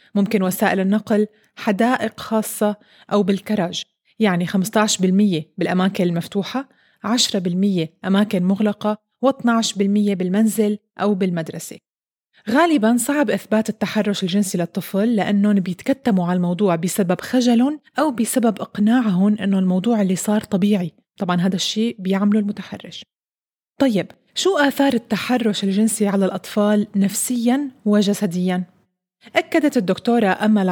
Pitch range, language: 190-220 Hz, Arabic